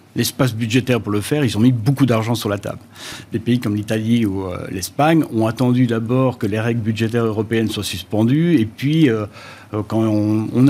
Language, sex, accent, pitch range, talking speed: French, male, French, 105-130 Hz, 185 wpm